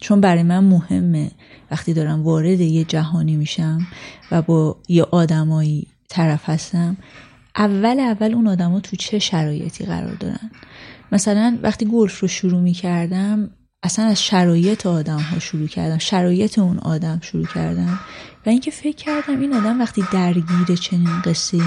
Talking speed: 150 wpm